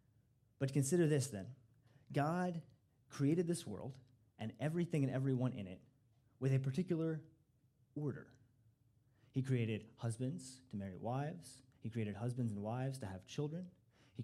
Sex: male